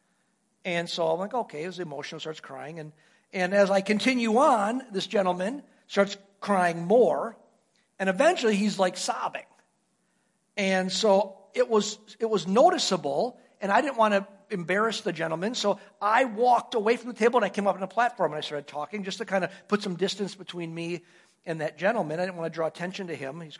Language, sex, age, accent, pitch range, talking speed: English, male, 50-69, American, 175-215 Hz, 200 wpm